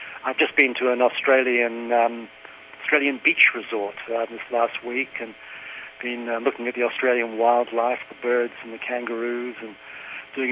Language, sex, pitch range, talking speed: English, male, 115-135 Hz, 165 wpm